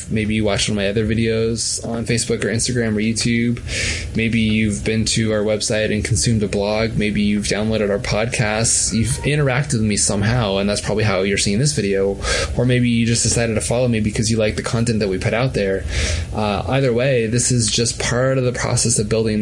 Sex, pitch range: male, 105-125 Hz